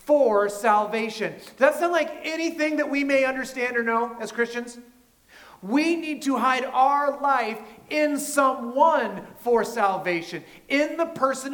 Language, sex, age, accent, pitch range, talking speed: English, male, 40-59, American, 185-265 Hz, 140 wpm